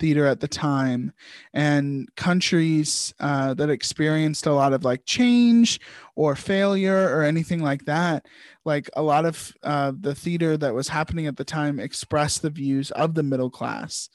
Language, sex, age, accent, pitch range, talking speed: English, male, 20-39, American, 140-170 Hz, 170 wpm